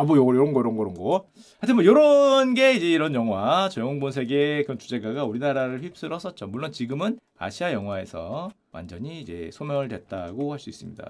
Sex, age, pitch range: male, 30-49, 145-225 Hz